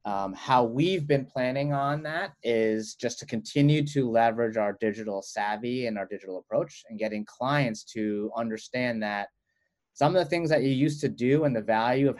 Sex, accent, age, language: male, American, 30-49, English